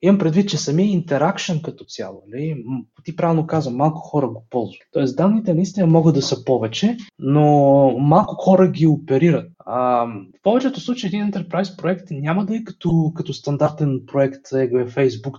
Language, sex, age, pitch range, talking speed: Bulgarian, male, 20-39, 130-170 Hz, 160 wpm